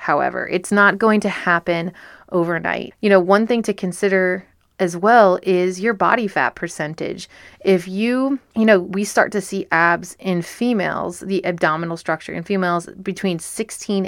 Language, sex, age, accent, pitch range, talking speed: English, female, 30-49, American, 180-220 Hz, 160 wpm